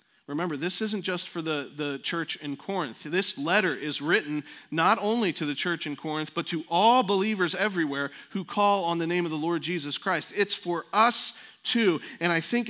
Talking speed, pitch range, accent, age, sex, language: 205 wpm, 135-185 Hz, American, 40-59, male, English